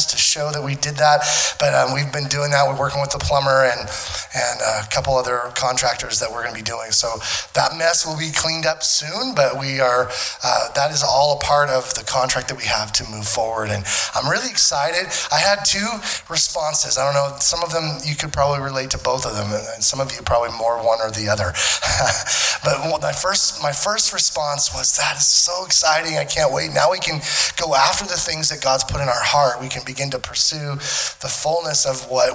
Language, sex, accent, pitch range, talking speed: English, male, American, 115-150 Hz, 230 wpm